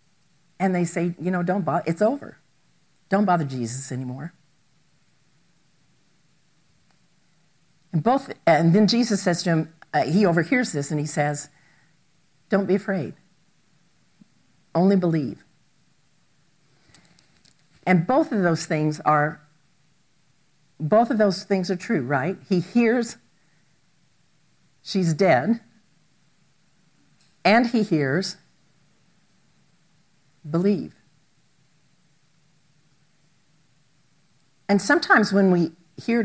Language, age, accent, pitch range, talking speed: English, 50-69, American, 150-185 Hz, 100 wpm